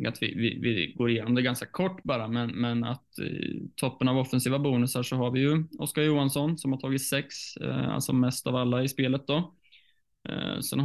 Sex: male